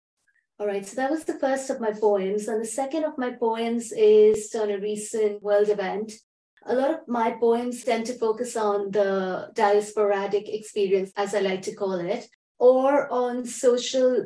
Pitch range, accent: 200-250 Hz, Indian